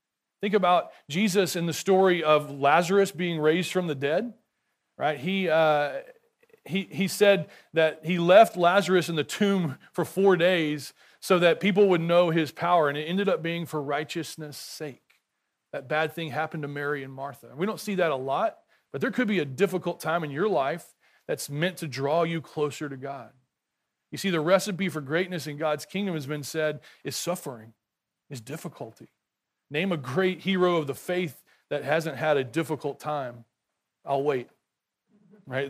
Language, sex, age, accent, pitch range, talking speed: English, male, 40-59, American, 145-180 Hz, 180 wpm